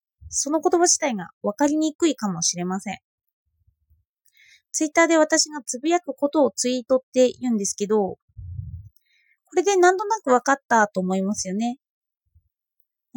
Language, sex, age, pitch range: Japanese, female, 20-39, 205-315 Hz